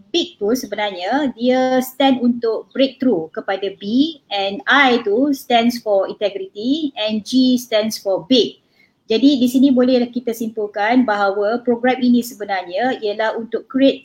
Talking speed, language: 135 wpm, Malay